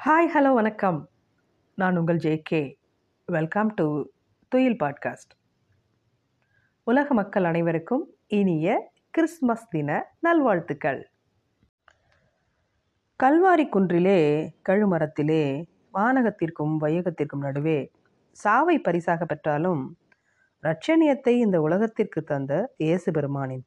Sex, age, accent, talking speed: female, 30-49, native, 80 wpm